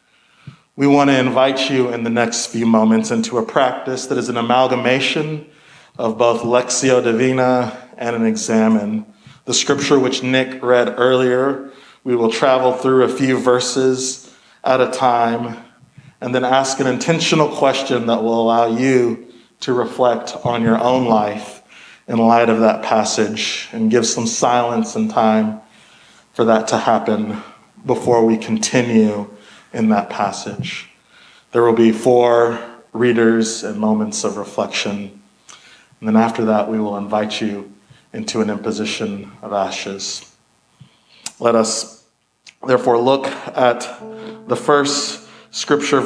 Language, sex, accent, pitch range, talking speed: English, male, American, 110-130 Hz, 140 wpm